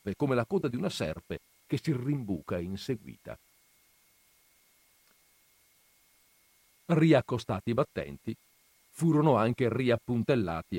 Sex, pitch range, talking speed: male, 100-140 Hz, 95 wpm